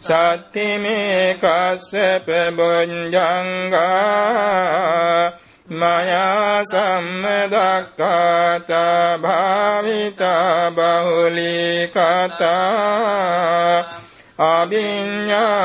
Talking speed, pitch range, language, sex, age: 40 wpm, 170-195 Hz, Vietnamese, male, 60-79